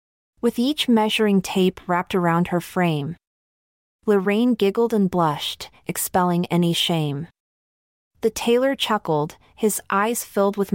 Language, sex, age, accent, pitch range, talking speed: English, female, 30-49, American, 170-220 Hz, 125 wpm